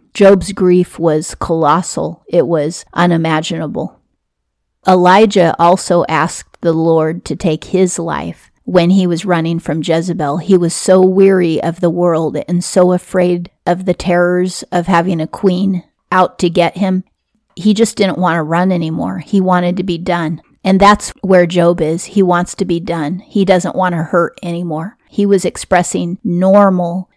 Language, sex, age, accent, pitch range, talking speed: English, female, 30-49, American, 165-190 Hz, 165 wpm